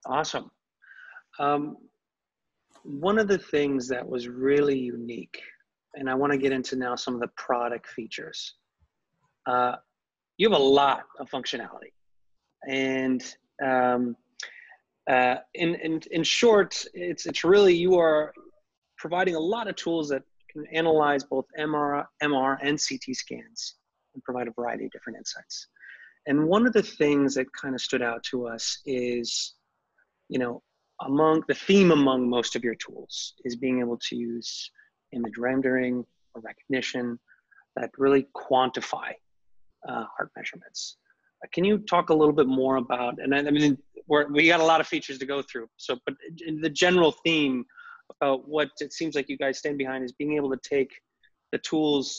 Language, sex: English, male